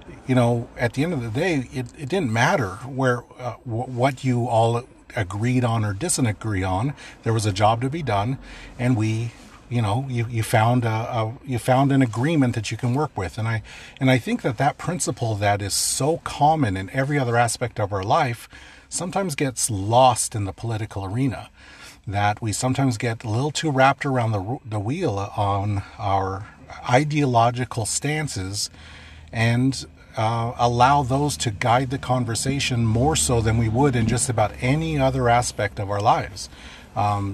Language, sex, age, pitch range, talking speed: English, male, 40-59, 105-130 Hz, 180 wpm